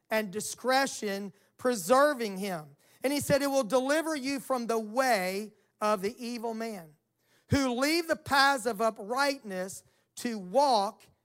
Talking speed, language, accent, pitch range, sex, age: 140 wpm, English, American, 210-275 Hz, male, 40-59